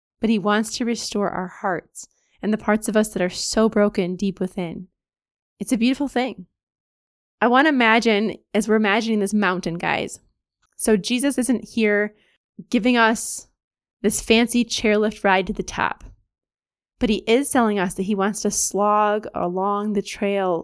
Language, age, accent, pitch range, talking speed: English, 20-39, American, 200-235 Hz, 170 wpm